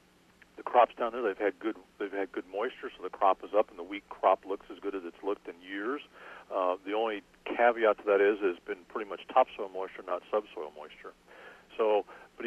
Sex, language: male, English